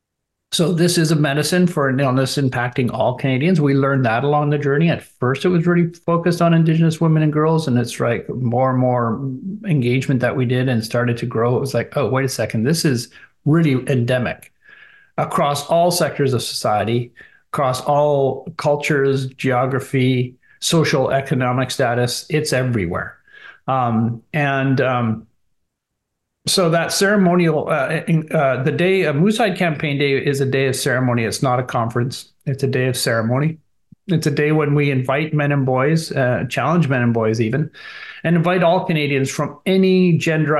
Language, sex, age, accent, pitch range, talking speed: English, male, 50-69, American, 125-160 Hz, 175 wpm